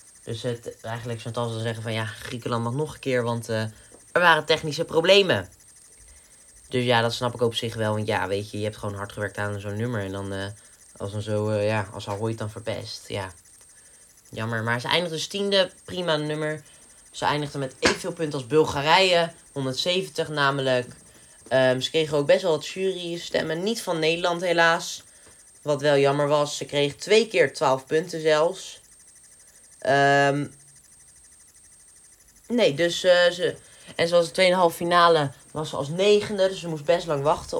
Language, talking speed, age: Dutch, 180 wpm, 20-39